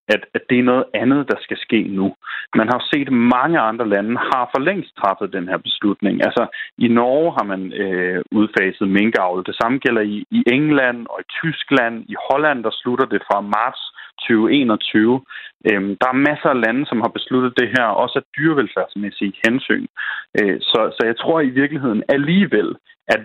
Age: 30-49